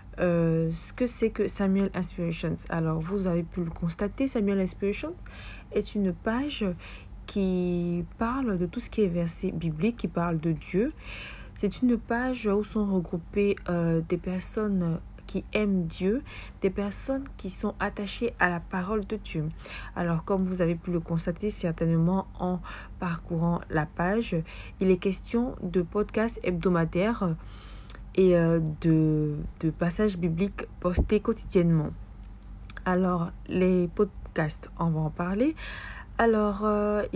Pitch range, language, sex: 165-205 Hz, French, female